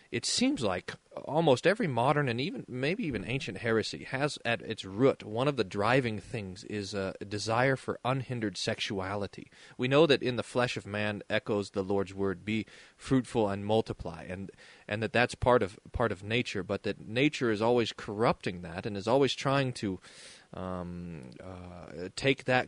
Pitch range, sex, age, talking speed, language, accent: 100-130 Hz, male, 30-49, 180 wpm, English, American